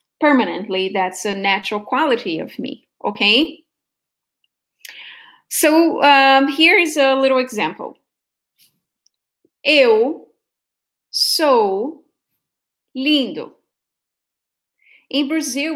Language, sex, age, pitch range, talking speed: English, female, 30-49, 215-295 Hz, 75 wpm